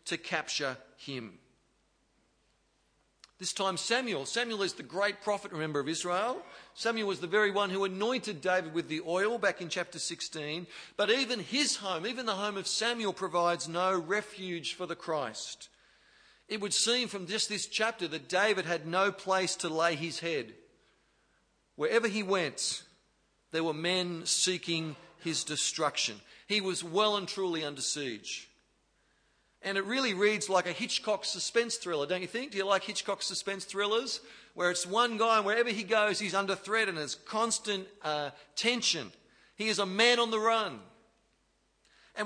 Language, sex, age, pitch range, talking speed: English, male, 40-59, 170-215 Hz, 170 wpm